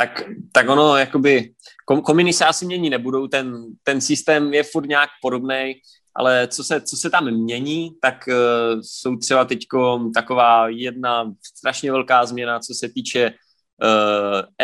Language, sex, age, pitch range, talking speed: Slovak, male, 20-39, 120-135 Hz, 150 wpm